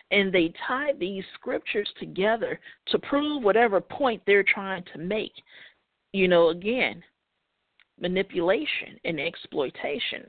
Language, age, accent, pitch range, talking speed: English, 40-59, American, 185-260 Hz, 115 wpm